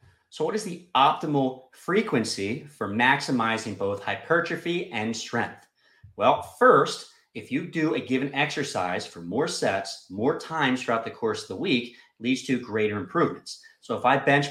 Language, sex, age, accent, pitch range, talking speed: English, male, 30-49, American, 110-150 Hz, 160 wpm